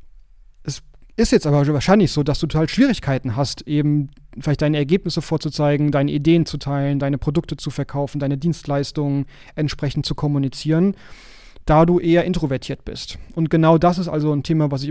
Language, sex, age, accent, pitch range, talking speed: German, male, 30-49, German, 145-165 Hz, 175 wpm